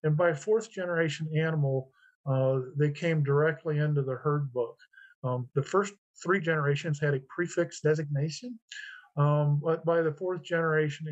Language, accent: English, American